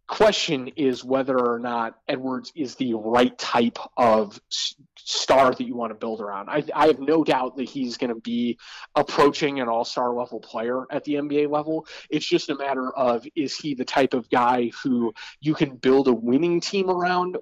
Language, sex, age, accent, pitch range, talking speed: English, male, 30-49, American, 120-150 Hz, 195 wpm